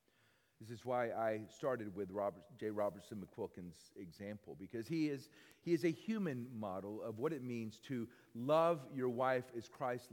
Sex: male